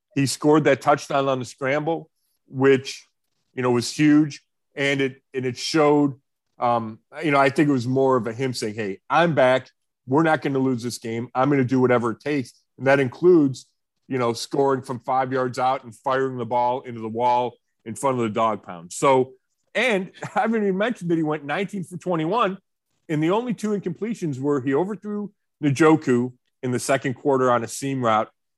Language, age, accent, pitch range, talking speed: English, 40-59, American, 125-160 Hz, 200 wpm